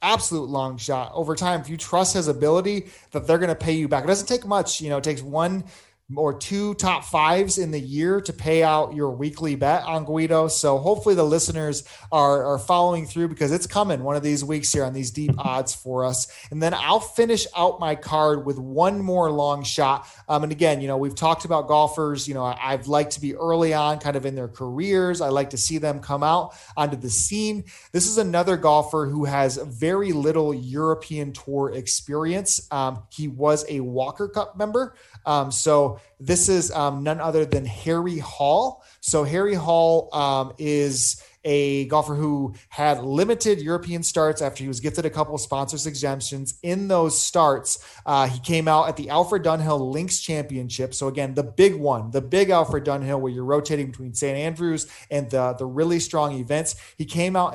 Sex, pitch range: male, 140-170 Hz